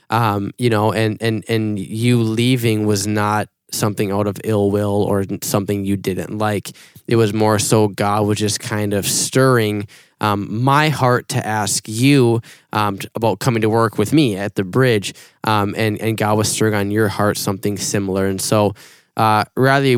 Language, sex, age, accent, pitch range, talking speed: English, male, 10-29, American, 105-120 Hz, 185 wpm